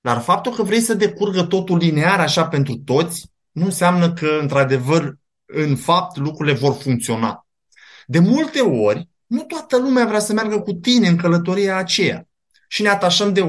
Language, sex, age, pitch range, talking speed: Romanian, male, 20-39, 155-220 Hz, 170 wpm